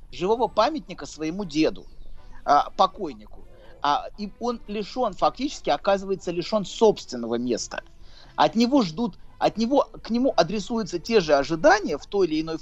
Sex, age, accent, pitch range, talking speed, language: male, 30-49, native, 165-235 Hz, 135 wpm, Russian